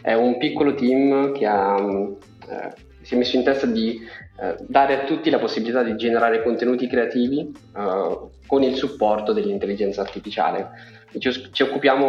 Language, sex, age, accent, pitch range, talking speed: Italian, male, 20-39, native, 105-130 Hz, 160 wpm